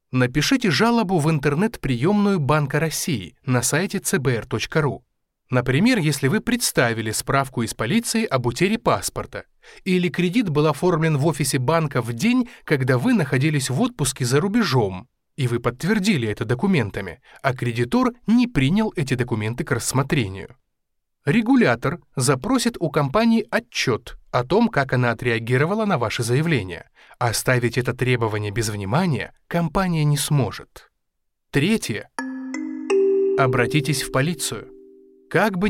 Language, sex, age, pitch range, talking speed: Russian, male, 20-39, 125-195 Hz, 125 wpm